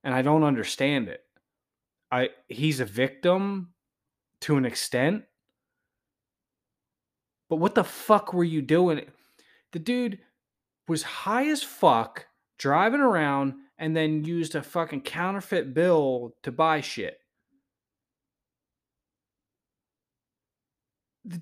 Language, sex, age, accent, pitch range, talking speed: English, male, 20-39, American, 120-165 Hz, 105 wpm